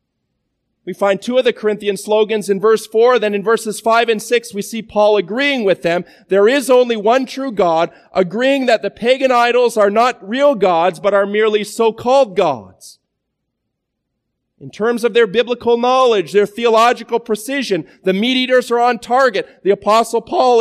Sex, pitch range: male, 195-245 Hz